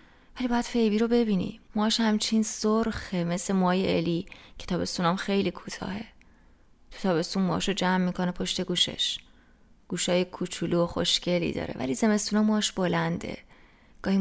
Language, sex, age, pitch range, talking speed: English, female, 20-39, 180-220 Hz, 125 wpm